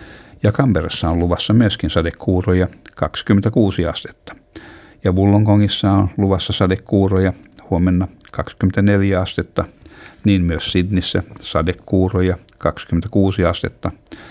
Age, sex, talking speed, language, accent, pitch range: 60-79, male, 90 wpm, Finnish, native, 85-105 Hz